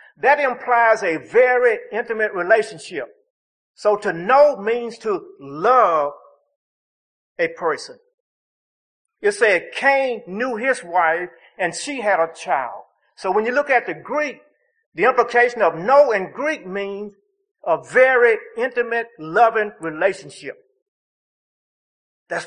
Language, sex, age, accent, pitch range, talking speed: English, male, 50-69, American, 220-295 Hz, 120 wpm